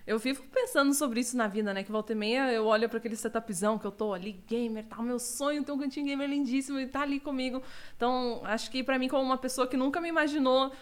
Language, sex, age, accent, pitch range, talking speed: Portuguese, female, 20-39, Brazilian, 225-285 Hz, 260 wpm